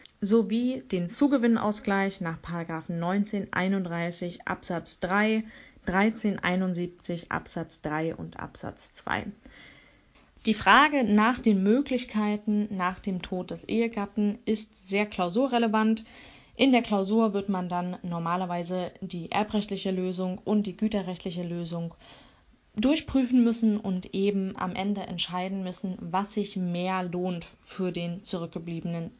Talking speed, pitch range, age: 115 wpm, 180-230 Hz, 20-39